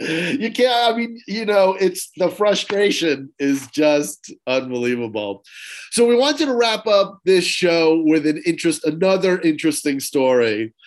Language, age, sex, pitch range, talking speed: English, 40-59, male, 140-190 Hz, 145 wpm